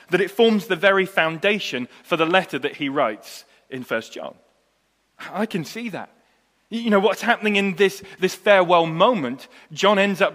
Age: 30-49